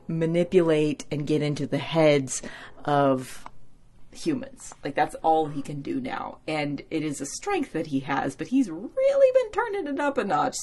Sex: female